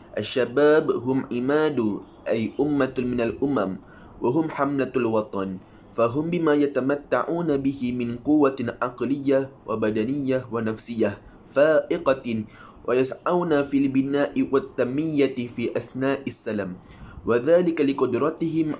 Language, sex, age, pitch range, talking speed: Malay, male, 20-39, 115-140 Hz, 95 wpm